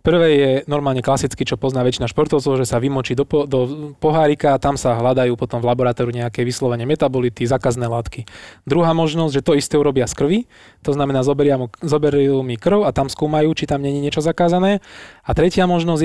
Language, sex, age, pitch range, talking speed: Slovak, male, 20-39, 125-150 Hz, 195 wpm